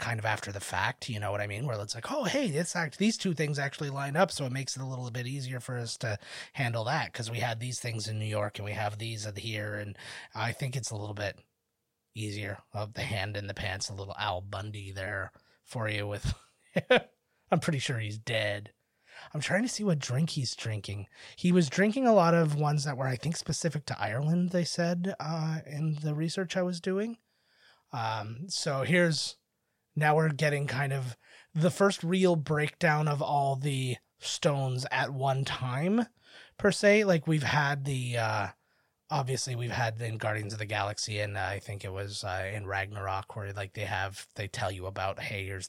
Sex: male